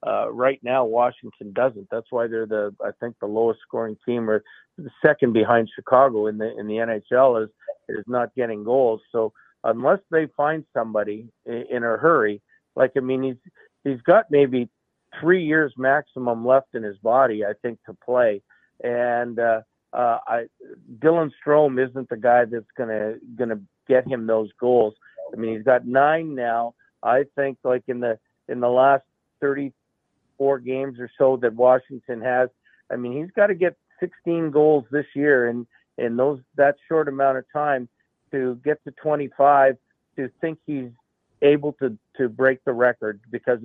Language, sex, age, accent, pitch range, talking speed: English, male, 50-69, American, 120-145 Hz, 175 wpm